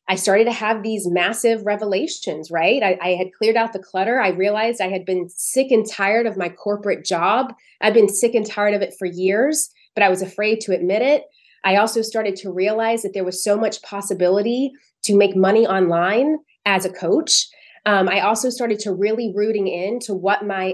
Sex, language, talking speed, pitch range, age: female, English, 205 wpm, 185-220 Hz, 20-39